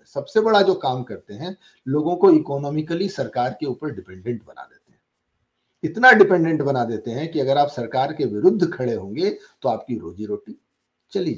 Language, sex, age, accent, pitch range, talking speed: English, male, 50-69, Indian, 125-180 Hz, 180 wpm